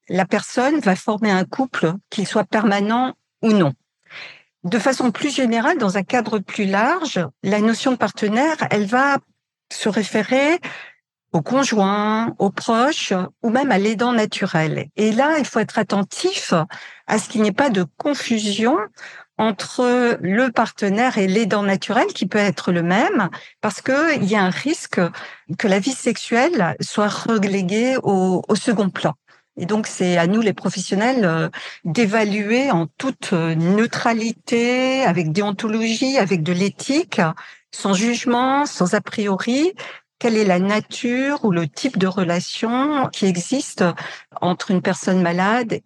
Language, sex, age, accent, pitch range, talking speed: French, female, 60-79, French, 185-245 Hz, 150 wpm